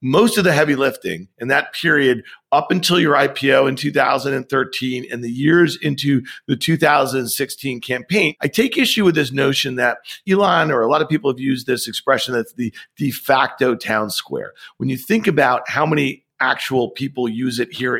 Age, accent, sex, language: 50-69, American, male, English